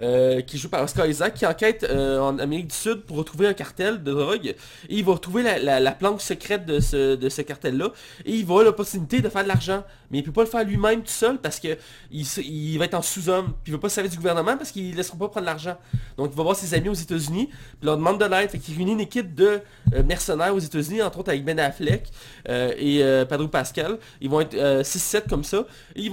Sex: male